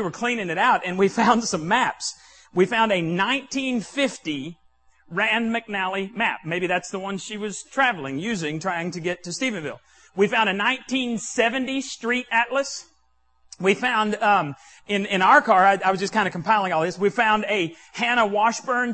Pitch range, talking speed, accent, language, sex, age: 180-245 Hz, 180 wpm, American, English, male, 40-59